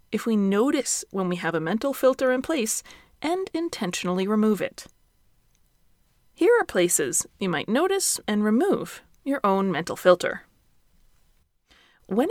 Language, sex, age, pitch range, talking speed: English, female, 30-49, 195-285 Hz, 135 wpm